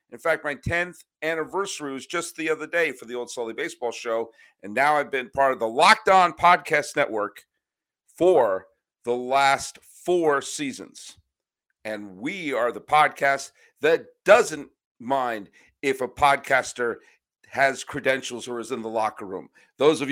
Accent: American